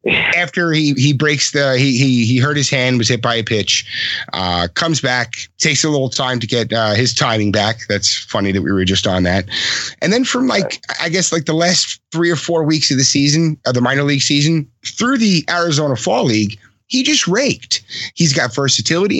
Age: 30-49